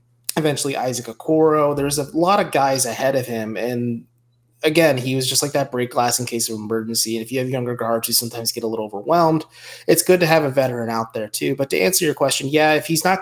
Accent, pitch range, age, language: American, 105-130 Hz, 20-39, English